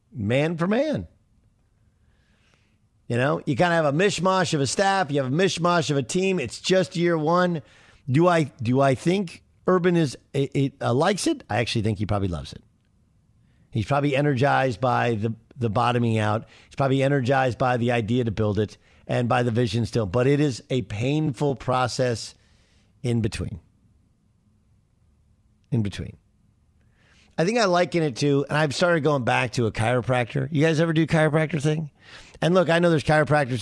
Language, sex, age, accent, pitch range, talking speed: English, male, 50-69, American, 110-155 Hz, 180 wpm